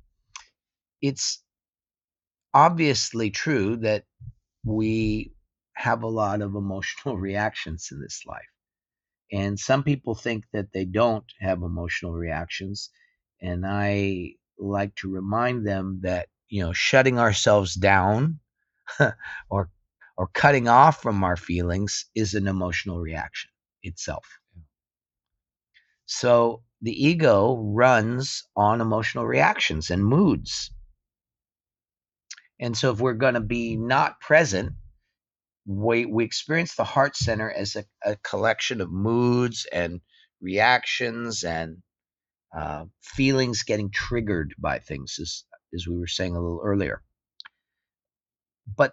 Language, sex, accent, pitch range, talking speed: Danish, male, American, 90-120 Hz, 120 wpm